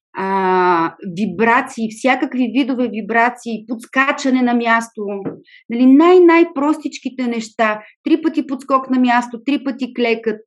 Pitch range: 210-265 Hz